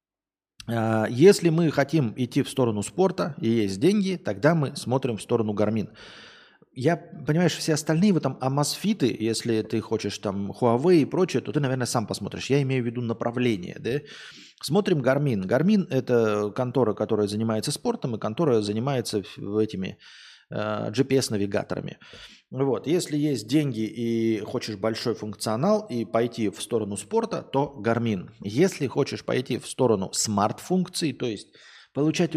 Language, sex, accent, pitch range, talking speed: Russian, male, native, 115-145 Hz, 150 wpm